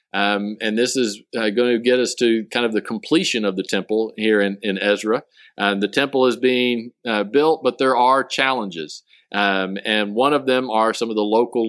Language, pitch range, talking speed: English, 100-125 Hz, 215 wpm